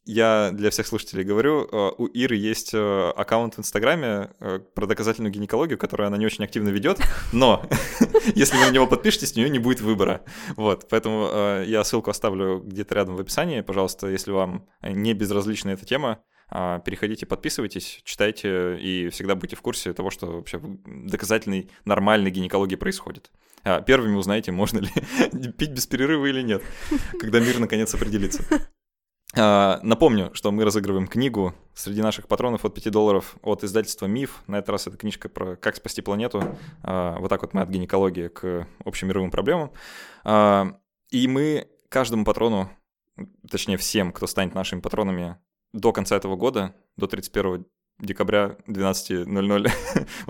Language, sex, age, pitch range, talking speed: Russian, male, 20-39, 95-110 Hz, 150 wpm